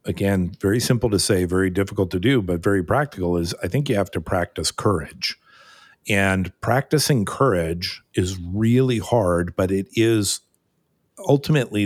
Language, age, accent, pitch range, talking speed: English, 50-69, American, 90-105 Hz, 150 wpm